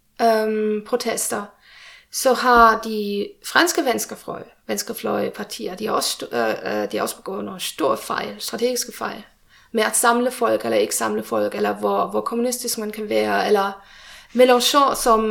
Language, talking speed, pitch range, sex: Danish, 140 wpm, 215-315 Hz, female